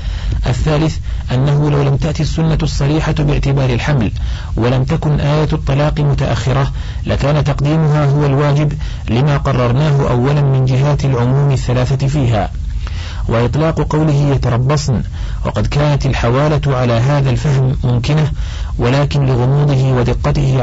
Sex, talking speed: male, 115 wpm